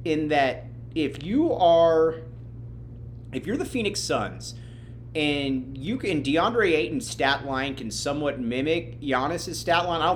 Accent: American